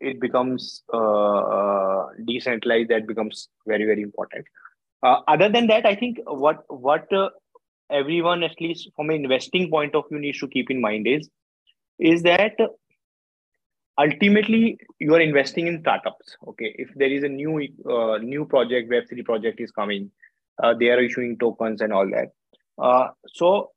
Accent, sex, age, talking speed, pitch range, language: Indian, male, 20-39, 165 wpm, 115-155 Hz, English